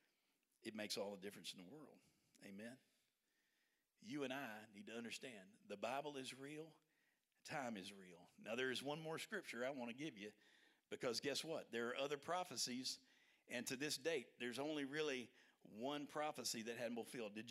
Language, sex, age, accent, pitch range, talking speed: English, male, 50-69, American, 105-135 Hz, 180 wpm